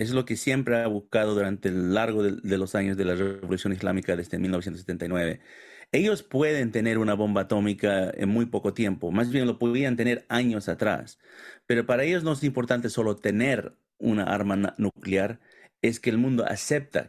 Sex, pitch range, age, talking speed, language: male, 100-125 Hz, 40-59, 180 wpm, Spanish